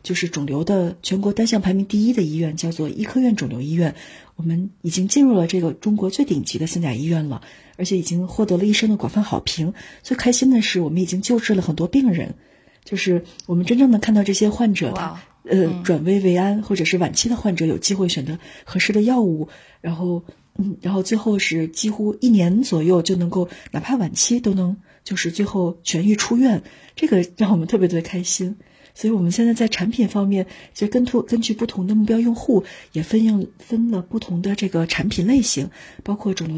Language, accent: Chinese, native